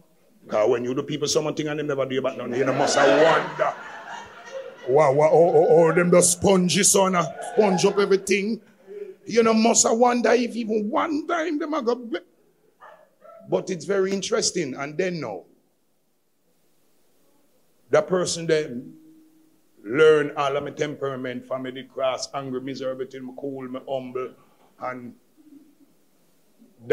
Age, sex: 50-69, male